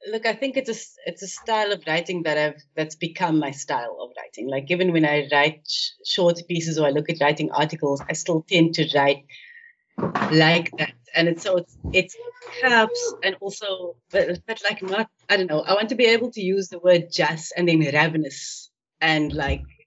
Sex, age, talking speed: female, 30-49, 210 wpm